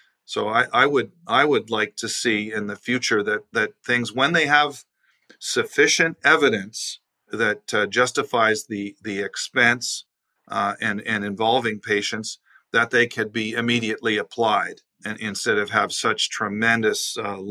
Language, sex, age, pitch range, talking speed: English, male, 40-59, 110-130 Hz, 150 wpm